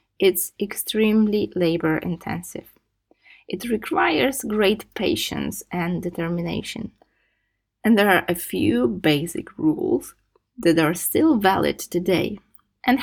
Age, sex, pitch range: 20-39, female, 170-225 Hz